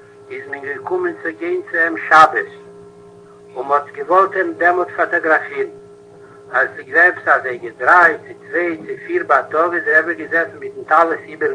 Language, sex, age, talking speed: Hebrew, male, 60-79, 125 wpm